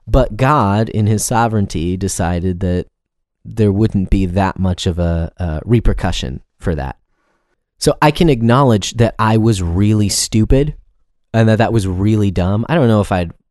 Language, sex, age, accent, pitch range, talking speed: English, male, 30-49, American, 90-115 Hz, 170 wpm